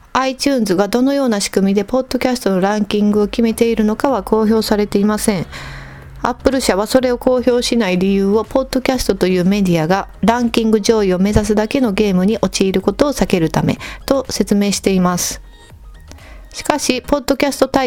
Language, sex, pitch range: Japanese, female, 195-250 Hz